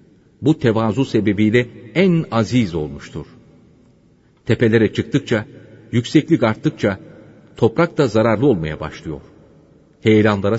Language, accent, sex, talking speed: Turkish, native, male, 90 wpm